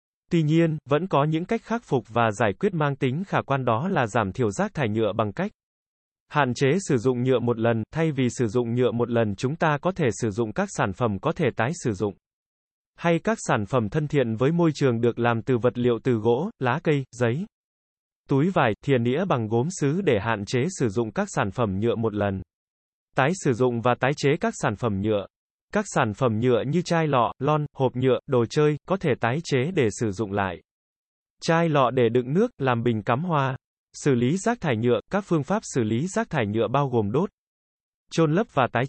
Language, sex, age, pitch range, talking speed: Vietnamese, male, 20-39, 120-160 Hz, 230 wpm